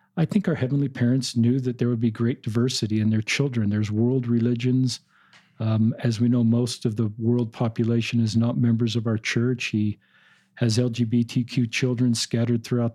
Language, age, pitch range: English, 50-69, 115-130 Hz